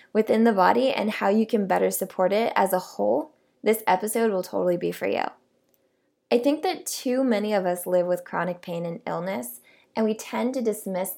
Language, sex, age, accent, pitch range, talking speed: English, female, 20-39, American, 185-240 Hz, 205 wpm